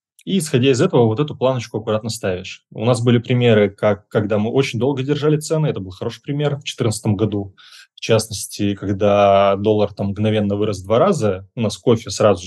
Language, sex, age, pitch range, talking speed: Russian, male, 20-39, 105-125 Hz, 190 wpm